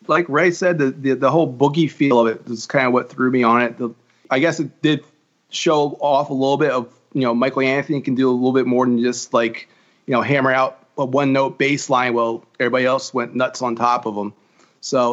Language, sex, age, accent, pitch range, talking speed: English, male, 30-49, American, 125-155 Hz, 245 wpm